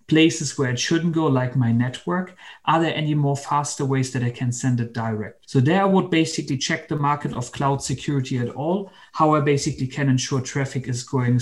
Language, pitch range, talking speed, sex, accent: English, 125-150 Hz, 215 wpm, male, German